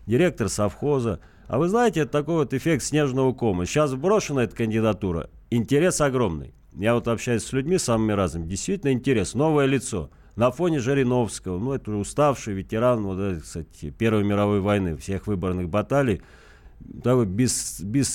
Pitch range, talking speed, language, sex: 105-135 Hz, 145 wpm, Russian, male